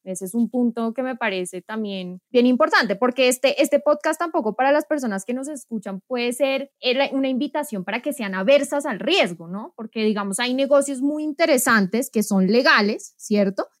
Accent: Colombian